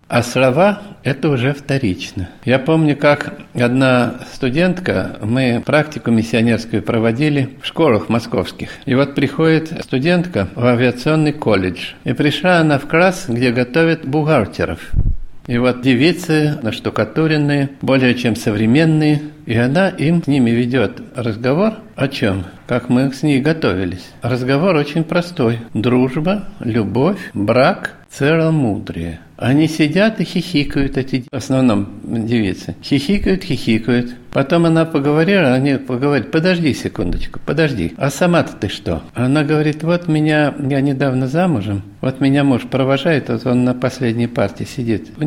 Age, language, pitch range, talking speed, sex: 50-69, Russian, 120-155 Hz, 135 wpm, male